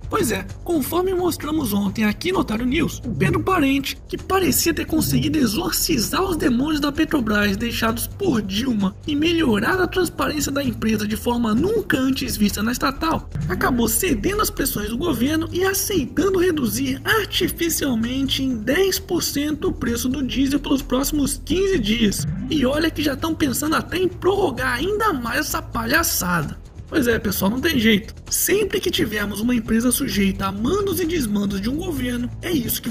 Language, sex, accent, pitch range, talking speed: Portuguese, male, Brazilian, 230-335 Hz, 170 wpm